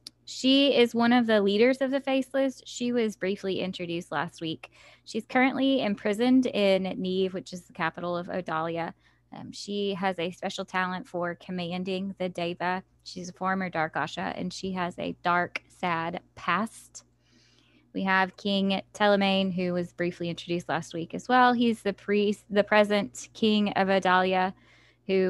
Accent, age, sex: American, 10-29, female